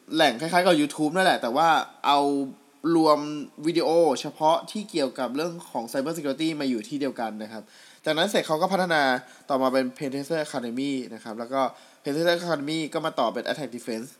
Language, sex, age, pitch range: Thai, male, 20-39, 135-175 Hz